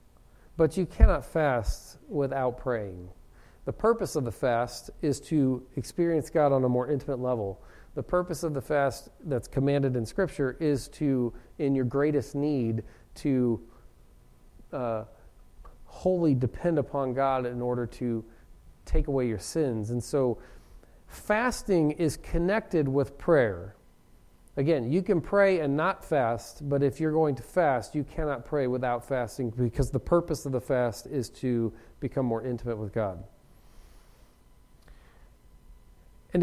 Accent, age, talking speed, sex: American, 40-59, 145 wpm, male